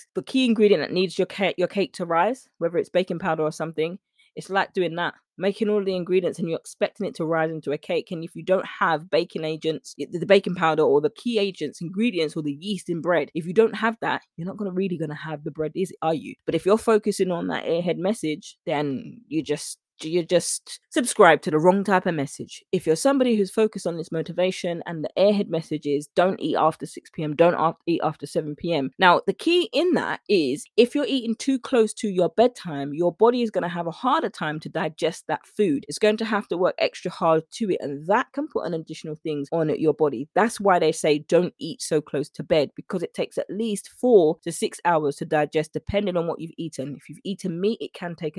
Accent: British